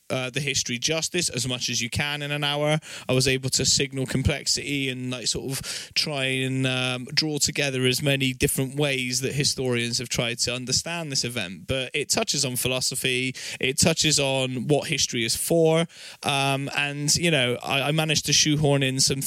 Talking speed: 195 wpm